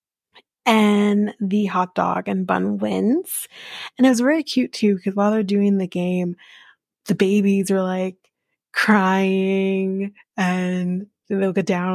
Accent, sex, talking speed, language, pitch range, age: American, female, 145 wpm, English, 190-225 Hz, 20-39